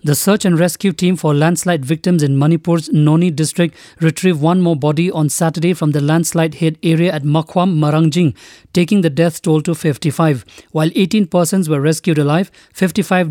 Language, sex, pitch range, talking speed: English, male, 155-180 Hz, 175 wpm